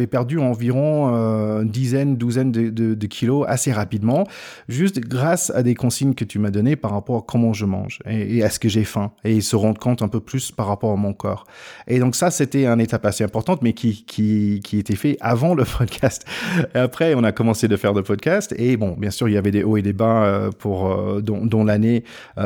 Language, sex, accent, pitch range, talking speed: French, male, French, 105-125 Hz, 240 wpm